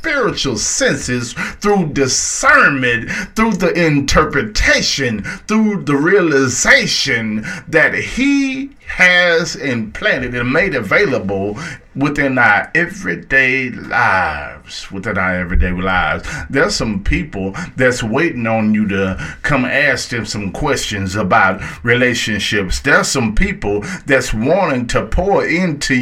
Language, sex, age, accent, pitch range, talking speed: English, male, 50-69, American, 115-175 Hz, 110 wpm